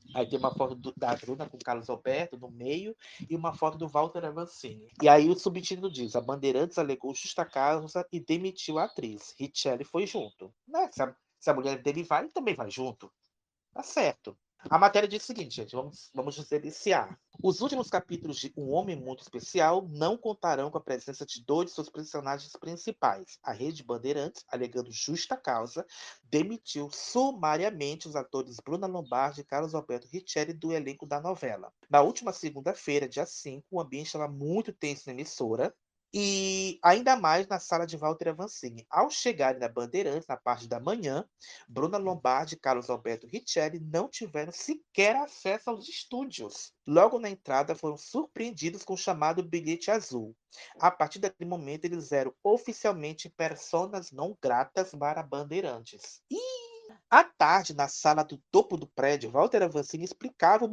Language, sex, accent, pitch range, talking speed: Portuguese, male, Brazilian, 140-190 Hz, 170 wpm